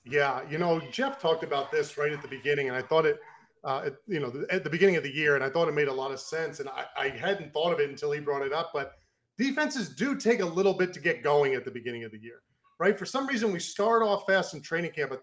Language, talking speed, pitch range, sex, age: English, 290 wpm, 145-195 Hz, male, 40-59